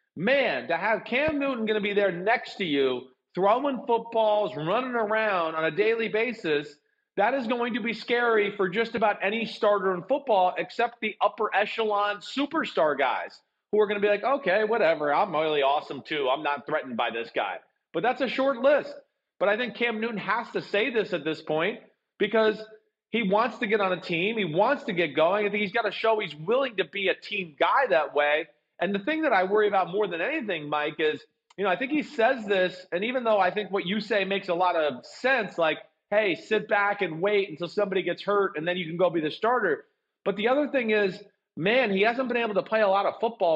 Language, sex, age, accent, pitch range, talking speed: English, male, 40-59, American, 175-230 Hz, 230 wpm